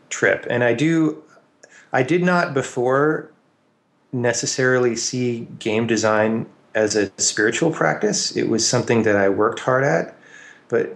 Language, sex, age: English, male, 30-49